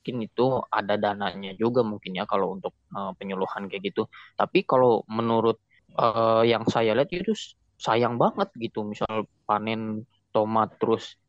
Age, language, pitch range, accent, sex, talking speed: 20-39, Indonesian, 105-120 Hz, native, male, 145 wpm